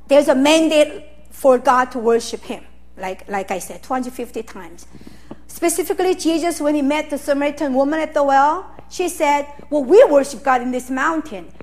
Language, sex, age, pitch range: Korean, female, 50-69, 200-280 Hz